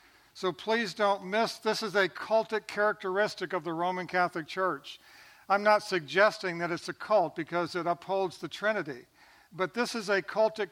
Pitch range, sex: 160-190 Hz, male